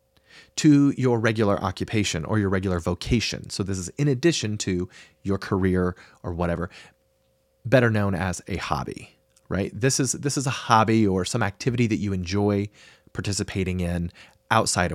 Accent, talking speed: American, 155 wpm